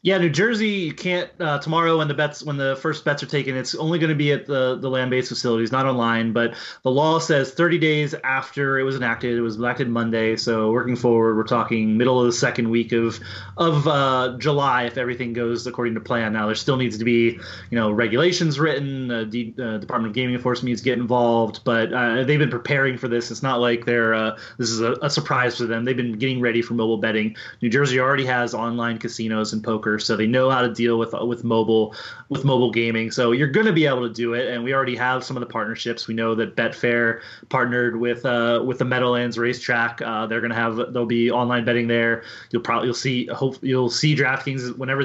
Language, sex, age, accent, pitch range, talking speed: English, male, 30-49, American, 115-135 Hz, 235 wpm